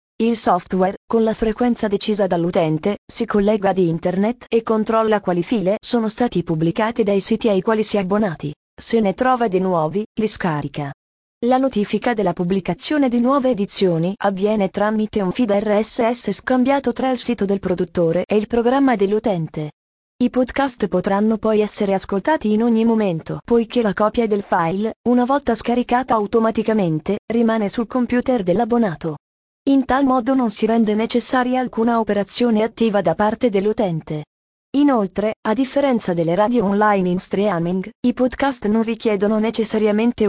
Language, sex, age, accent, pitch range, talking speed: Italian, female, 30-49, native, 195-240 Hz, 150 wpm